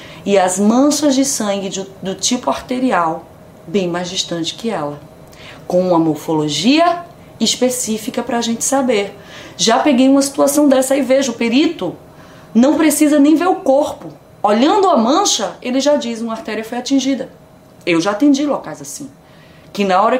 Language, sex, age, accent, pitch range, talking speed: Portuguese, female, 20-39, Brazilian, 180-270 Hz, 165 wpm